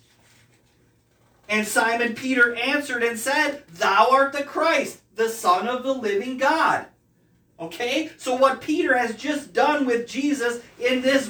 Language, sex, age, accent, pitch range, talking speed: English, male, 40-59, American, 240-315 Hz, 145 wpm